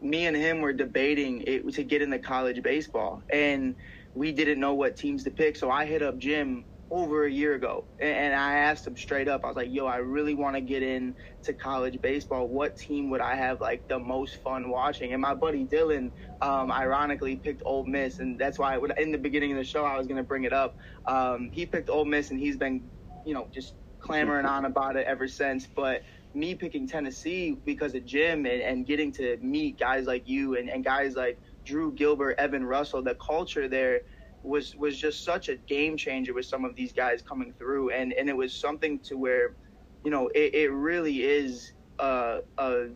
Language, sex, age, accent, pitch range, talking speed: English, male, 20-39, American, 130-150 Hz, 215 wpm